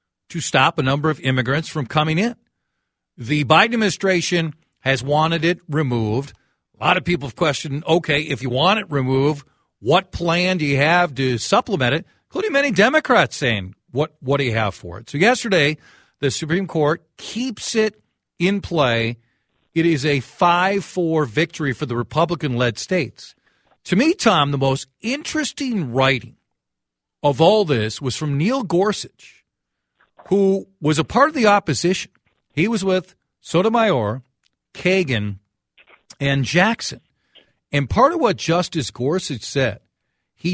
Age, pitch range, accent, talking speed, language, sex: 50-69, 130-185 Hz, American, 150 wpm, English, male